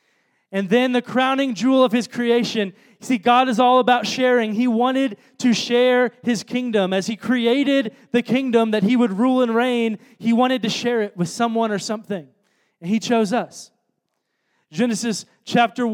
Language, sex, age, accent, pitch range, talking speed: English, male, 20-39, American, 205-245 Hz, 175 wpm